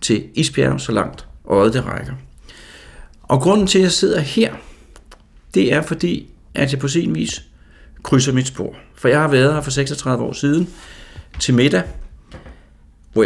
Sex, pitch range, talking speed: male, 90-140 Hz, 175 wpm